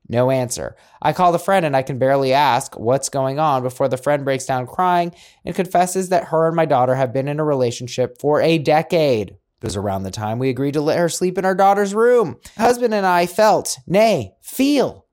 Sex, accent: male, American